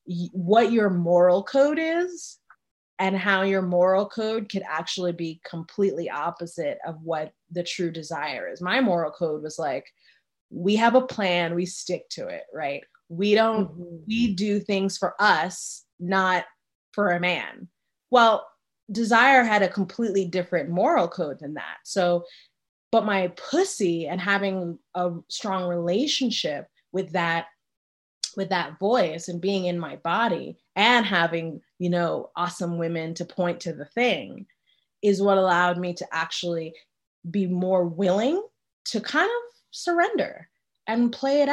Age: 20-39